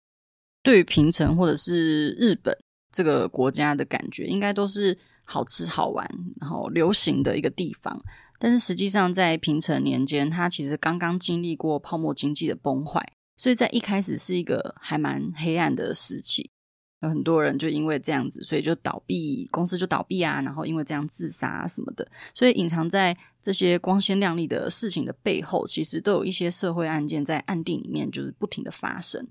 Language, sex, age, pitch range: Chinese, female, 20-39, 150-185 Hz